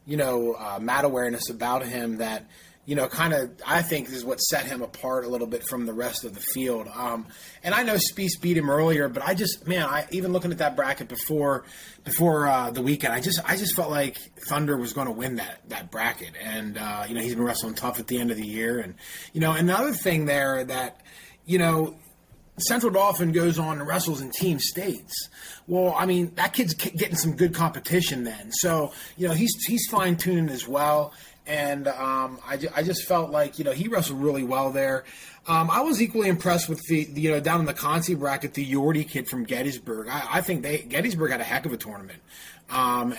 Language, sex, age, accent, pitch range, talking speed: English, male, 20-39, American, 125-170 Hz, 225 wpm